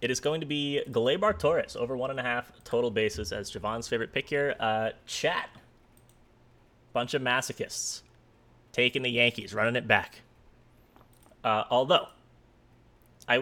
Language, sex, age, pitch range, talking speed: English, male, 20-39, 105-130 Hz, 150 wpm